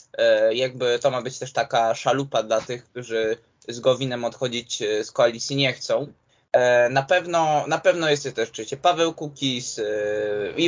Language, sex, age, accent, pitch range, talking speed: Polish, male, 20-39, native, 130-160 Hz, 145 wpm